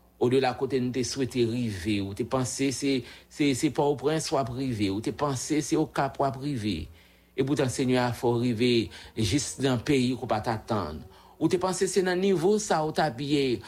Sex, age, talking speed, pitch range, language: male, 50-69, 210 wpm, 115-165 Hz, English